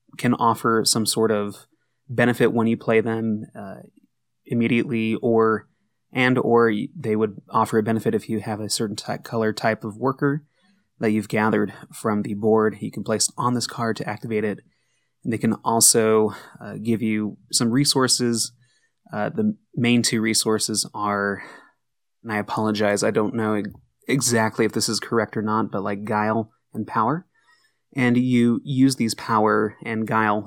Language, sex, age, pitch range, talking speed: English, male, 20-39, 105-120 Hz, 165 wpm